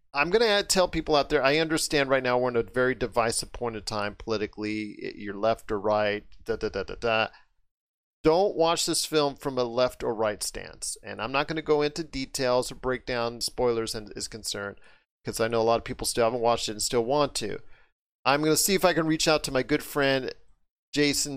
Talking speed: 235 wpm